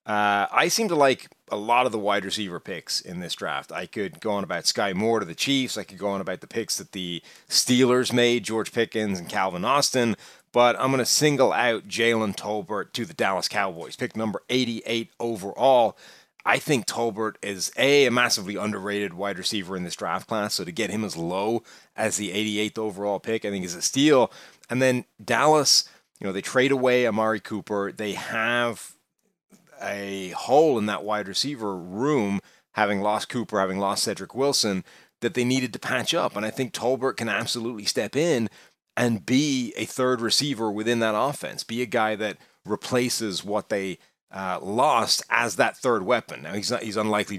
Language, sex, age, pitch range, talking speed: English, male, 30-49, 100-125 Hz, 190 wpm